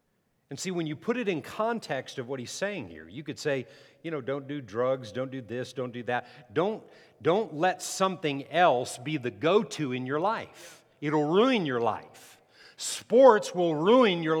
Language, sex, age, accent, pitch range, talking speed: English, male, 50-69, American, 145-210 Hz, 190 wpm